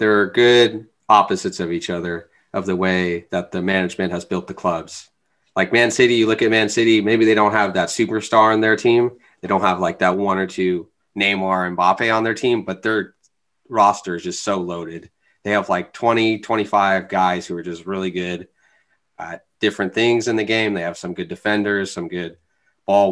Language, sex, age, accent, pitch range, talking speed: English, male, 30-49, American, 90-105 Hz, 210 wpm